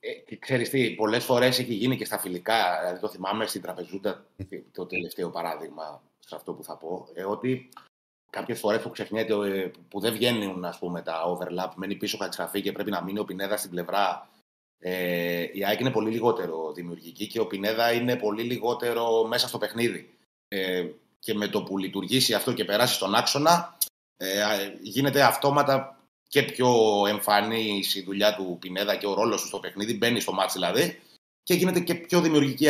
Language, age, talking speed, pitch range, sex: Greek, 30-49, 185 wpm, 95-125 Hz, male